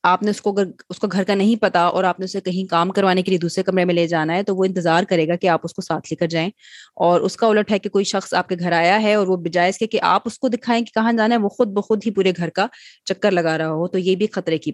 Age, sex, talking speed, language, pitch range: 20-39, female, 320 wpm, Urdu, 175-200 Hz